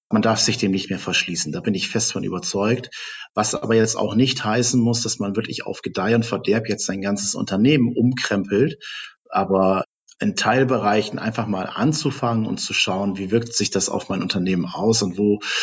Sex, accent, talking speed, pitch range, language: male, German, 195 wpm, 100-120 Hz, German